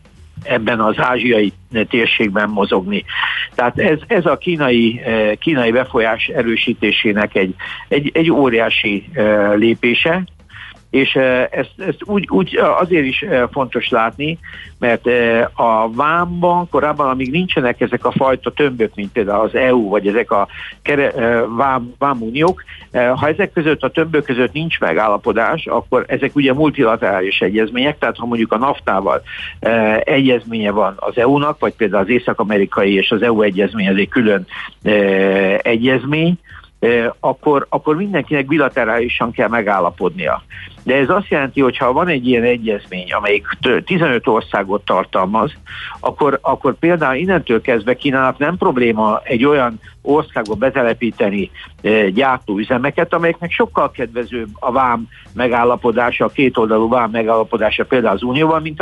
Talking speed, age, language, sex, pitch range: 130 wpm, 60-79, Hungarian, male, 110-145 Hz